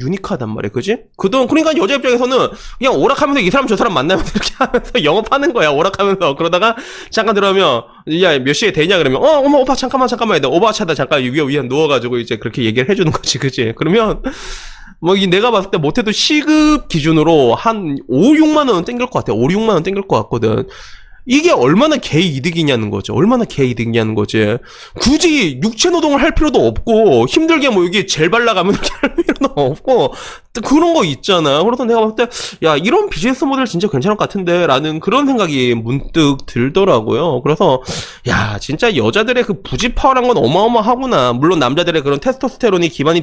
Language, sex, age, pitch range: Korean, male, 20-39, 150-255 Hz